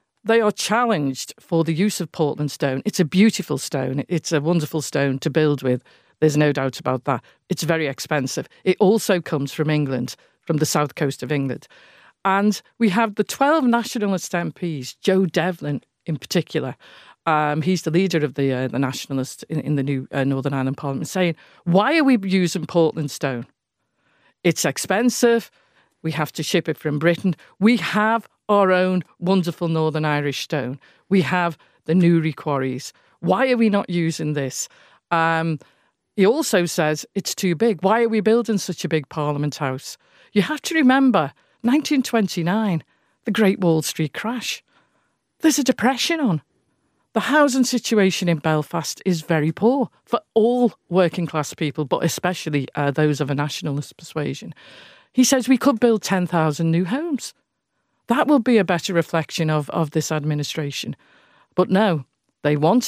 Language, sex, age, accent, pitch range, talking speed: English, female, 50-69, British, 150-210 Hz, 165 wpm